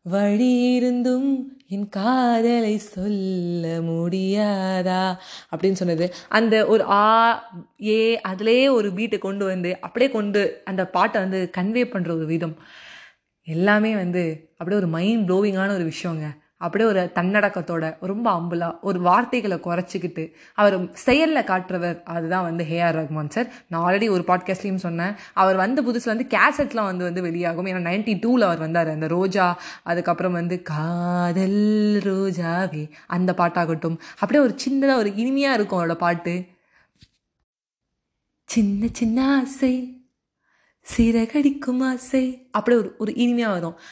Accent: native